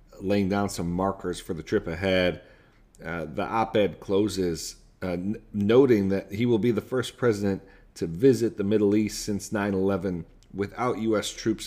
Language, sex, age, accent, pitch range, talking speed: English, male, 40-59, American, 90-110 Hz, 175 wpm